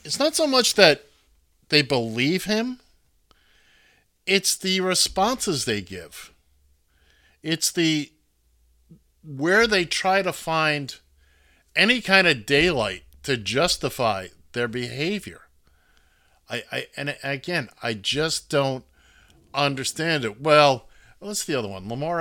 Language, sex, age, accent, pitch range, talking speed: English, male, 50-69, American, 105-170 Hz, 115 wpm